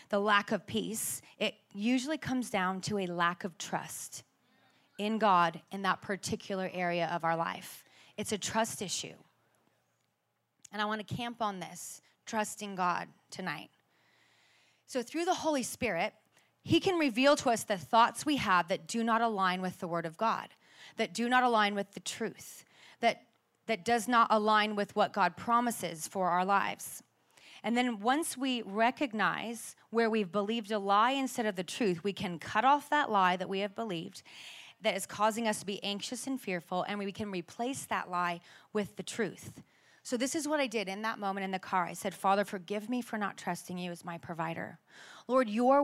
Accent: American